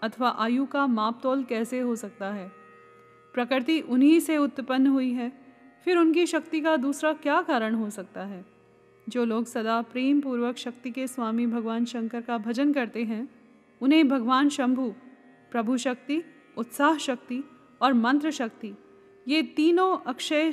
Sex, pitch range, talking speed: female, 235-285 Hz, 150 wpm